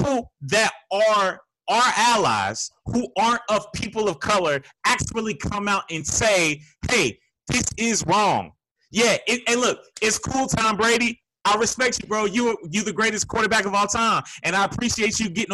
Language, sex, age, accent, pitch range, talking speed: English, male, 30-49, American, 205-245 Hz, 170 wpm